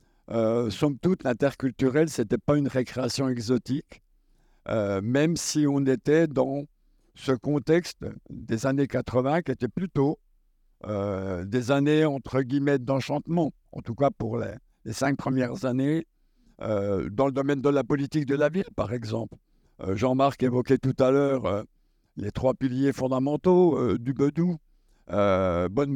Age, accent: 60-79, French